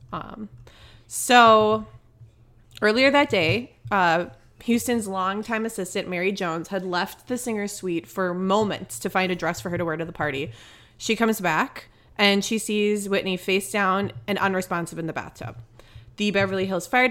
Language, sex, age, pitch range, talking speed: English, female, 20-39, 160-210 Hz, 165 wpm